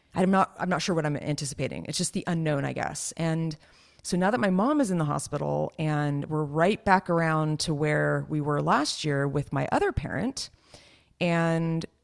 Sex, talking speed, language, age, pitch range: female, 200 wpm, English, 30-49, 145-175 Hz